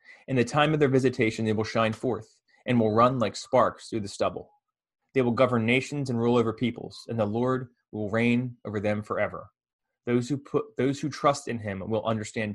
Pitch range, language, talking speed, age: 105-125 Hz, English, 210 wpm, 20-39